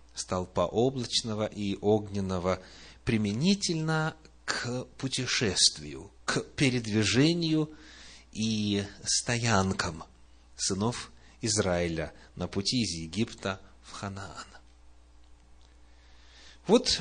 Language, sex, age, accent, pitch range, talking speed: Russian, male, 30-49, native, 80-130 Hz, 70 wpm